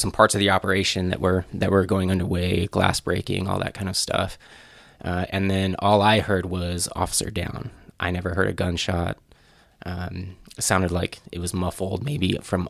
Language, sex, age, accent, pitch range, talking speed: English, male, 20-39, American, 90-105 Hz, 195 wpm